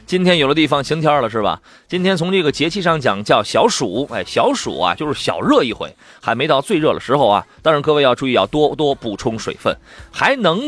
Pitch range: 145-195 Hz